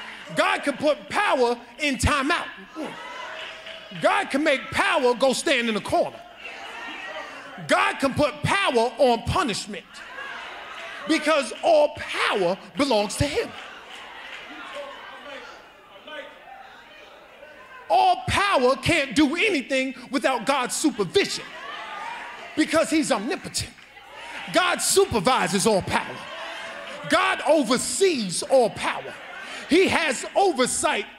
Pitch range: 255-330 Hz